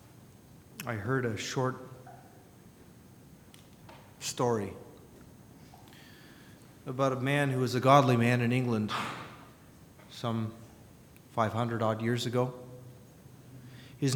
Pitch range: 110-130 Hz